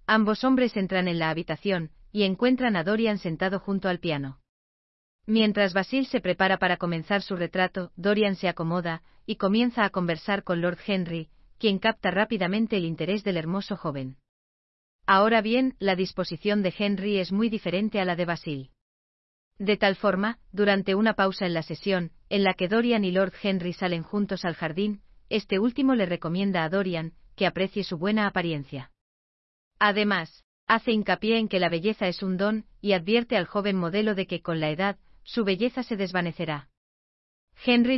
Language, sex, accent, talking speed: Spanish, female, Spanish, 170 wpm